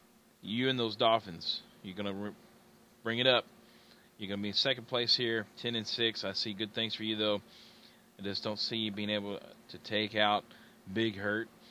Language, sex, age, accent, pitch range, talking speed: English, male, 30-49, American, 100-120 Hz, 195 wpm